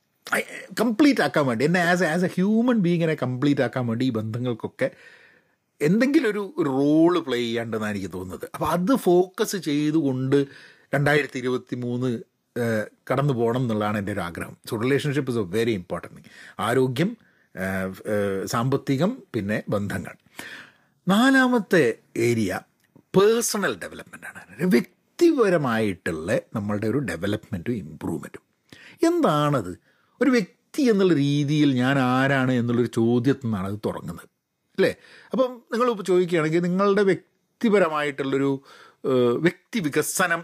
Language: Malayalam